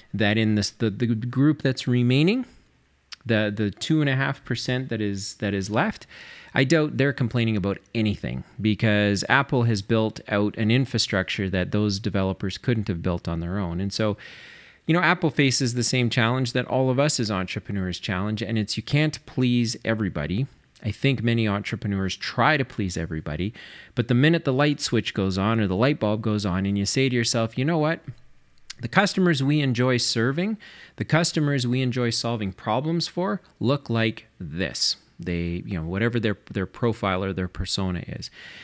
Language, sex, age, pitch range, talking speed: English, male, 30-49, 100-135 Hz, 185 wpm